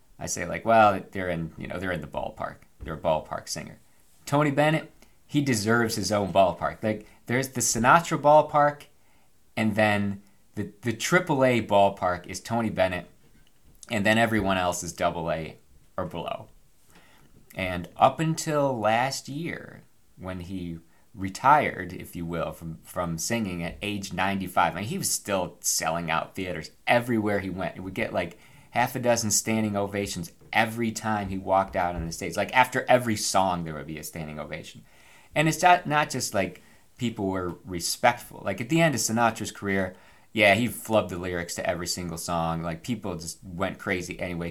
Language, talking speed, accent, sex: English, 175 wpm, American, male